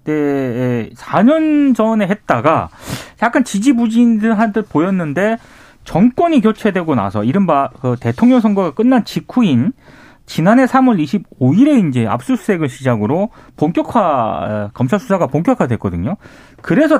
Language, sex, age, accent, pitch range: Korean, male, 30-49, native, 135-225 Hz